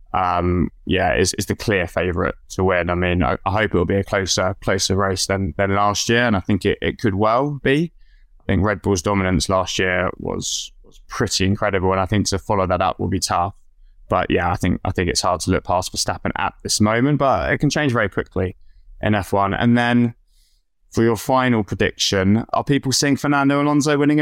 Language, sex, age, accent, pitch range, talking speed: English, male, 20-39, British, 95-115 Hz, 220 wpm